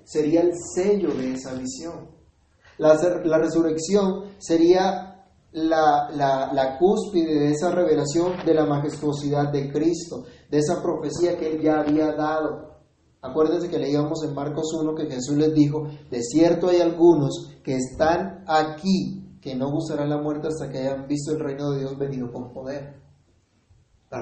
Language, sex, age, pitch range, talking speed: Spanish, male, 30-49, 130-160 Hz, 160 wpm